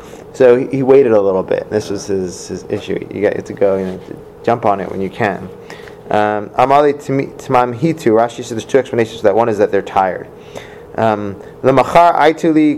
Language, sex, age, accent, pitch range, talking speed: English, male, 30-49, American, 110-155 Hz, 200 wpm